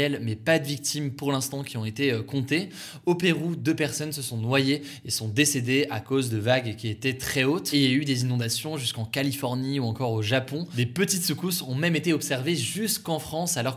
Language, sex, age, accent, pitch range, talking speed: French, male, 20-39, French, 120-150 Hz, 220 wpm